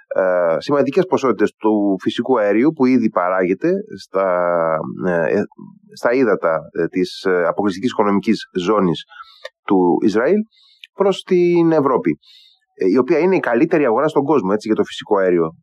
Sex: male